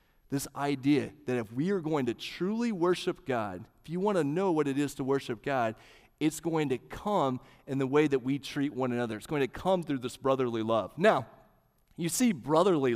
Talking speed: 215 wpm